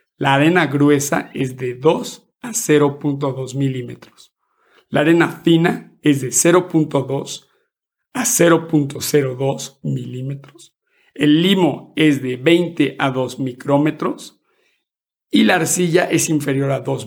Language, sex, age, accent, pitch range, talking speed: Spanish, male, 50-69, Mexican, 135-165 Hz, 115 wpm